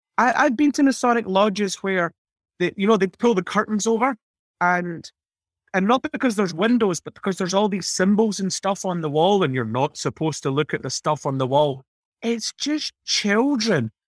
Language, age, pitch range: English, 30-49, 155-225 Hz